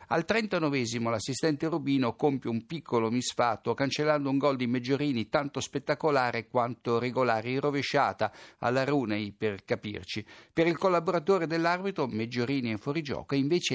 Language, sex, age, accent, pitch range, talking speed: Italian, male, 60-79, native, 115-155 Hz, 145 wpm